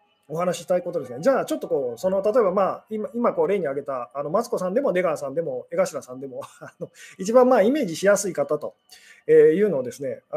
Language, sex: Japanese, male